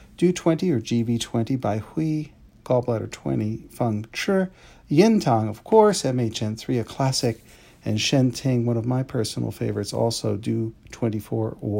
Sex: male